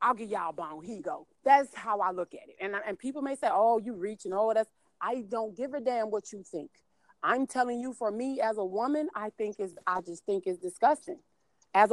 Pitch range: 205-260 Hz